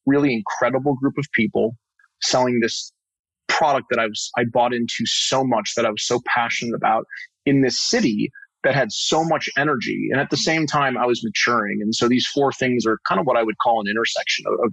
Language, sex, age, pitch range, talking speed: English, male, 30-49, 110-125 Hz, 220 wpm